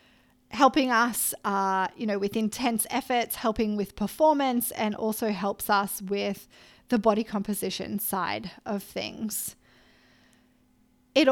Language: English